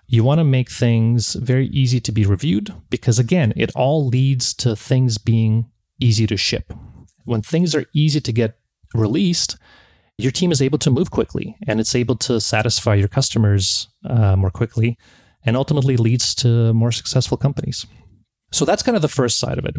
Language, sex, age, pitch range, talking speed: English, male, 30-49, 105-125 Hz, 185 wpm